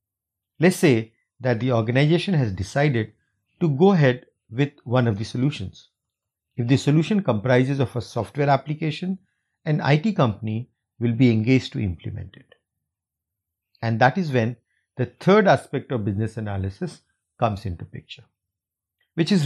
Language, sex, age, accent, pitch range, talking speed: English, male, 50-69, Indian, 105-155 Hz, 145 wpm